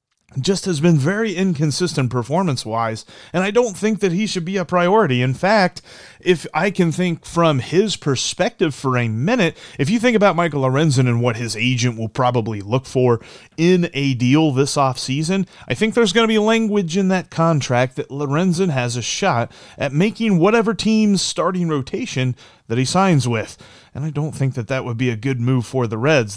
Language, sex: English, male